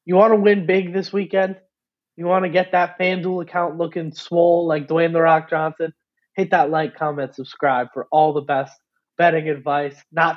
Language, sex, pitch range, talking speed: English, male, 140-180 Hz, 190 wpm